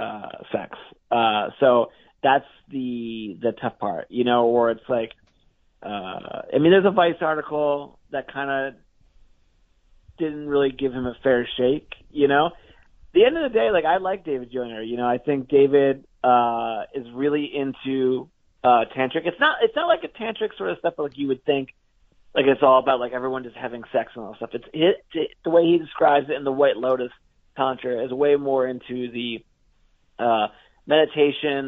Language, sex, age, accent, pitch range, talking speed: English, male, 30-49, American, 120-145 Hz, 195 wpm